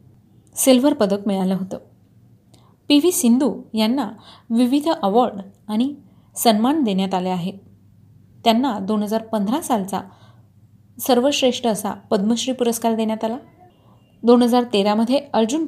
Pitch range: 205-250 Hz